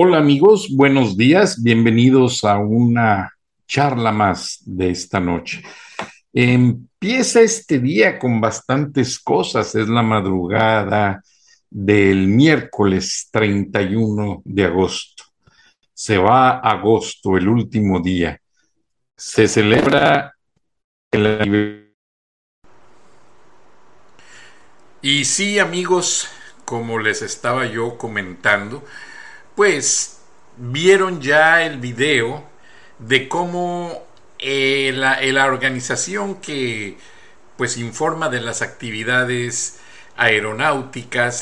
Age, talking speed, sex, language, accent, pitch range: 50-69, 90 wpm, male, Spanish, Mexican, 105-140 Hz